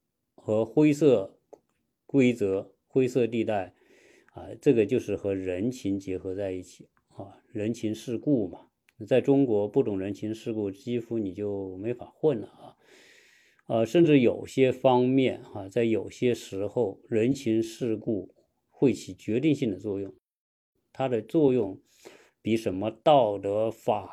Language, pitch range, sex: Chinese, 100-130 Hz, male